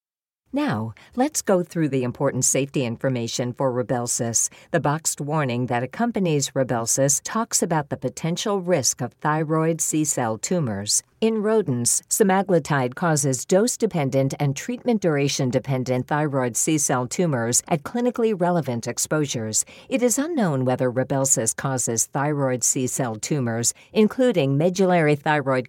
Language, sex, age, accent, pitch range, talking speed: English, female, 50-69, American, 125-175 Hz, 120 wpm